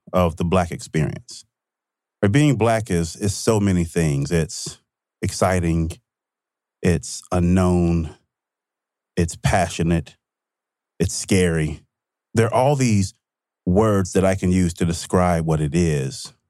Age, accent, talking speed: 30-49, American, 125 wpm